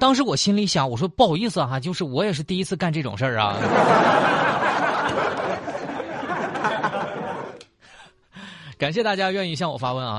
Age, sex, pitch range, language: 20-39, male, 110-165 Hz, Chinese